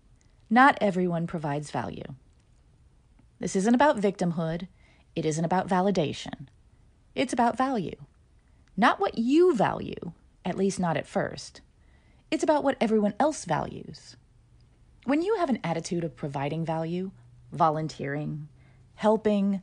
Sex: female